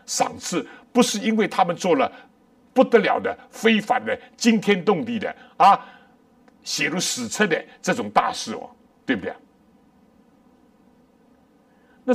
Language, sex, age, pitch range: Chinese, male, 60-79, 245-250 Hz